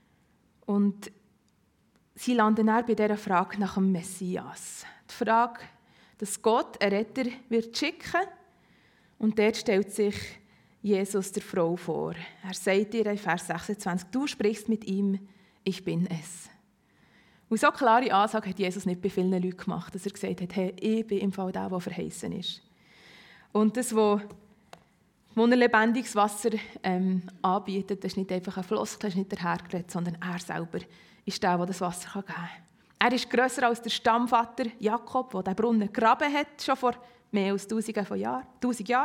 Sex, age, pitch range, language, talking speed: female, 20-39, 195-230 Hz, German, 170 wpm